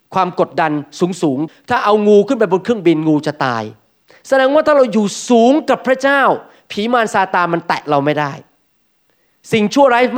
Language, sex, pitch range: Thai, male, 170-230 Hz